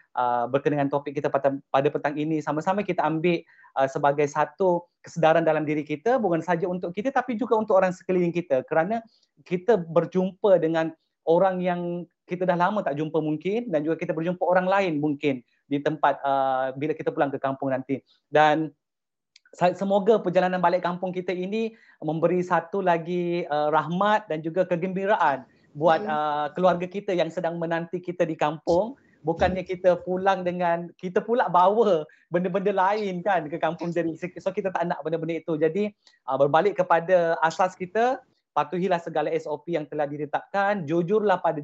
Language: Malay